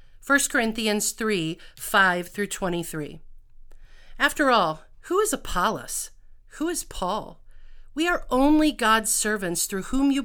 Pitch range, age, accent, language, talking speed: 185-245 Hz, 50-69, American, English, 115 wpm